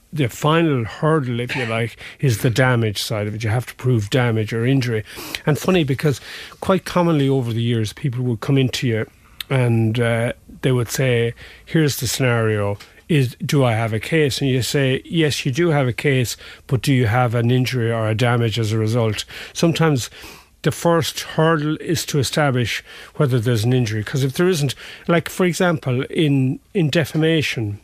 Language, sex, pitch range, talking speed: English, male, 115-145 Hz, 190 wpm